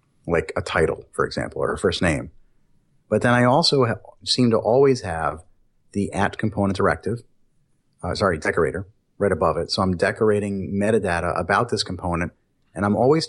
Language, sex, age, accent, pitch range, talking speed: English, male, 30-49, American, 90-110 Hz, 170 wpm